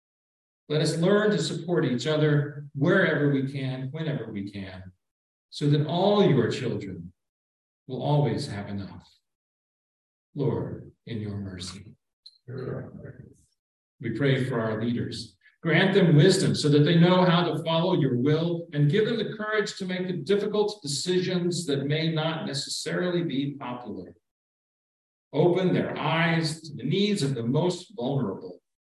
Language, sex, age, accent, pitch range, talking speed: English, male, 50-69, American, 115-165 Hz, 145 wpm